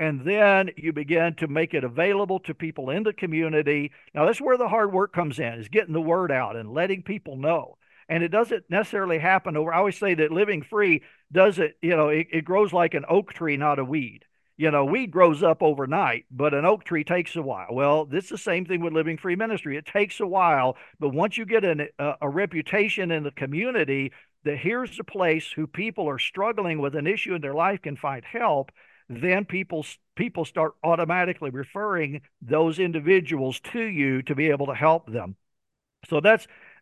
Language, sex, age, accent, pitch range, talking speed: English, male, 50-69, American, 145-190 Hz, 205 wpm